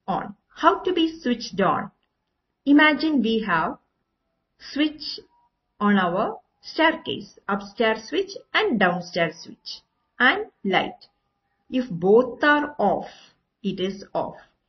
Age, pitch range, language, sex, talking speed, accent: 50-69, 195-255 Hz, Malayalam, female, 110 wpm, native